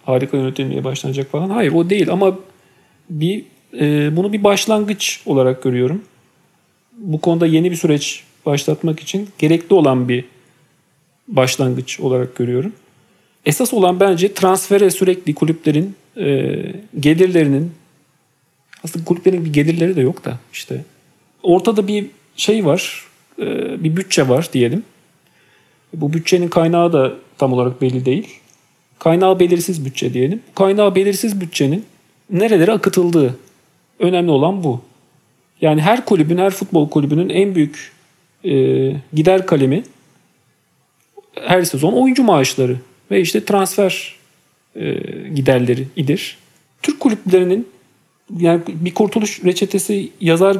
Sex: male